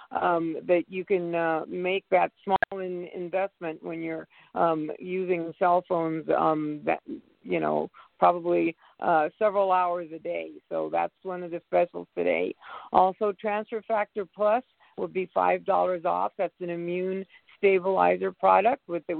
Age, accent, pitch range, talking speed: 50-69, American, 170-205 Hz, 140 wpm